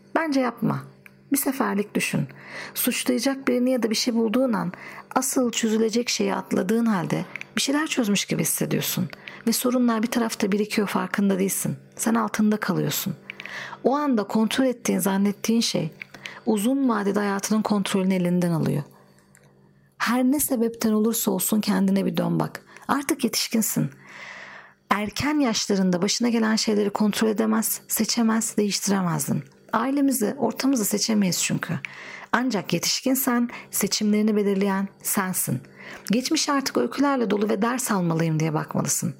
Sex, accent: female, native